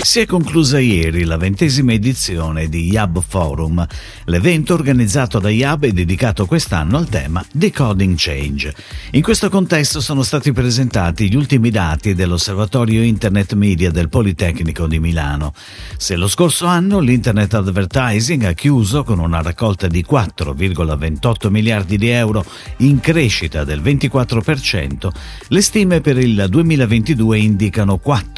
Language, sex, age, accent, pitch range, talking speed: Italian, male, 50-69, native, 90-140 Hz, 135 wpm